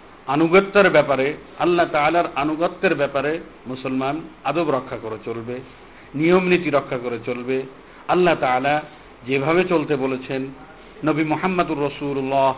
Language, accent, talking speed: Bengali, native, 110 wpm